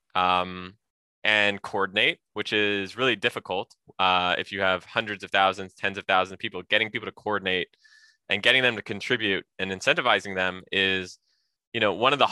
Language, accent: English, American